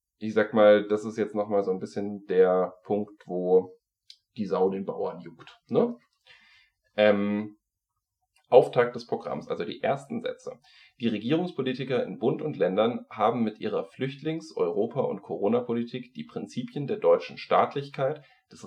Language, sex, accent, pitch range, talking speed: German, male, German, 100-150 Hz, 145 wpm